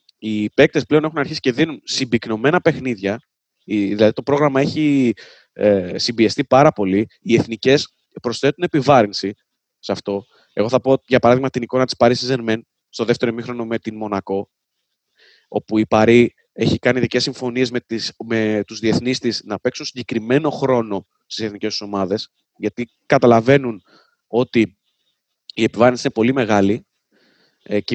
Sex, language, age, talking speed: male, Greek, 20-39, 150 wpm